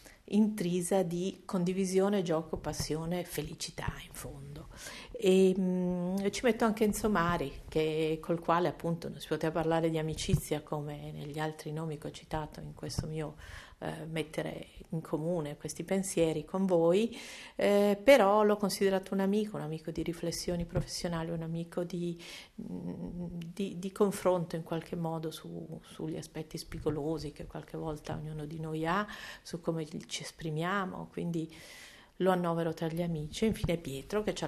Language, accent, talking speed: Italian, native, 155 wpm